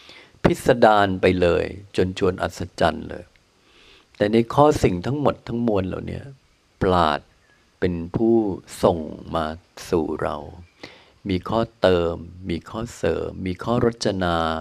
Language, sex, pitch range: Thai, male, 90-115 Hz